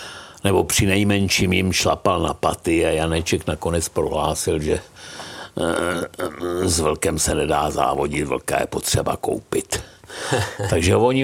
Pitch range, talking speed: 85-100 Hz, 125 wpm